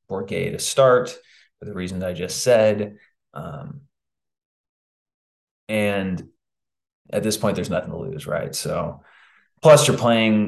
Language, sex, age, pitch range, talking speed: English, male, 20-39, 100-125 Hz, 135 wpm